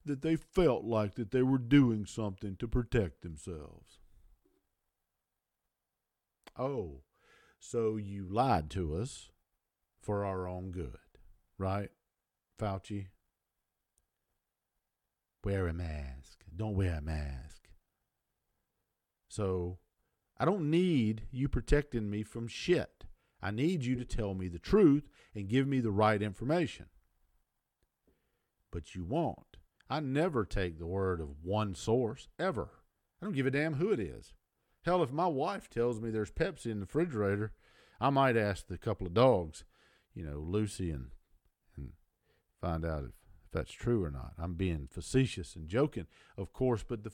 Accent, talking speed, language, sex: American, 145 wpm, English, male